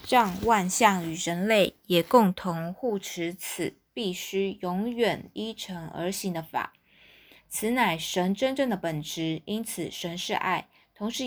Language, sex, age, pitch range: Chinese, female, 20-39, 175-220 Hz